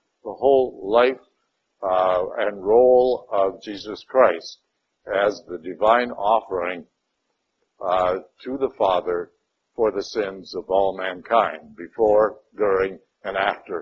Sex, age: male, 60-79